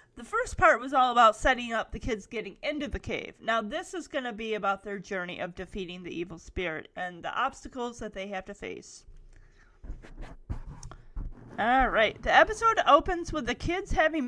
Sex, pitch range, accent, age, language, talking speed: female, 220-335 Hz, American, 30-49, English, 185 wpm